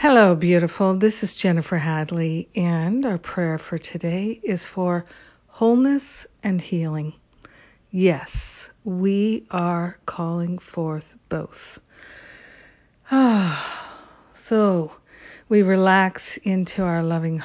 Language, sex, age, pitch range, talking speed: English, female, 50-69, 170-200 Hz, 105 wpm